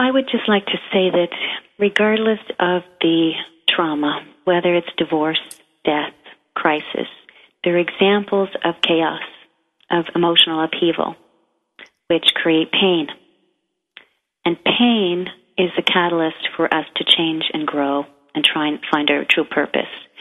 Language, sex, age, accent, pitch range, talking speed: English, female, 40-59, American, 150-180 Hz, 135 wpm